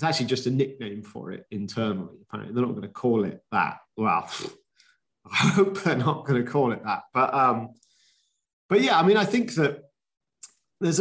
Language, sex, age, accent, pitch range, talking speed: English, male, 30-49, British, 110-150 Hz, 195 wpm